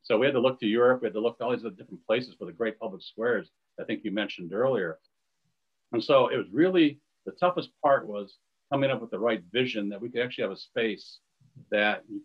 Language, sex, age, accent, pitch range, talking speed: English, male, 50-69, American, 105-125 Hz, 245 wpm